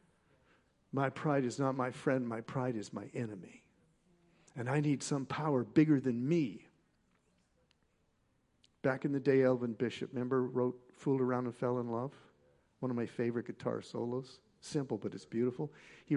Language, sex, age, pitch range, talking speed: English, male, 50-69, 125-160 Hz, 165 wpm